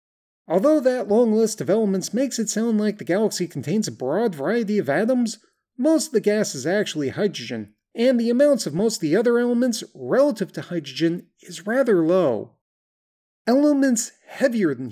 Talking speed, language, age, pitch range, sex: 175 wpm, English, 30-49, 175-245 Hz, male